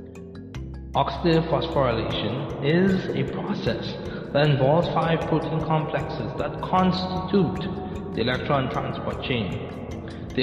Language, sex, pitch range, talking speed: Italian, male, 110-145 Hz, 100 wpm